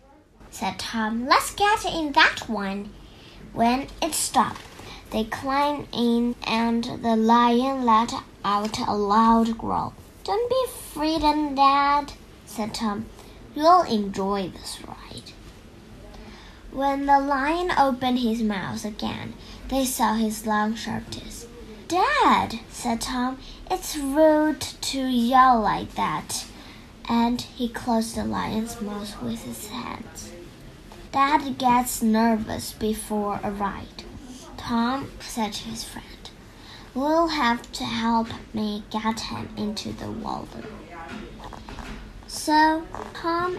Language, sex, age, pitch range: Chinese, male, 10-29, 210-275 Hz